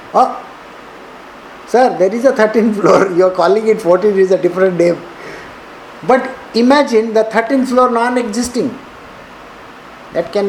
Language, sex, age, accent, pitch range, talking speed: English, male, 50-69, Indian, 185-240 Hz, 135 wpm